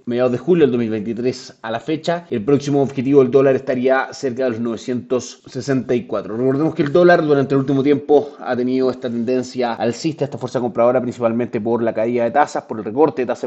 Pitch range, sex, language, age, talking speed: 115-140 Hz, male, Spanish, 30-49, 200 wpm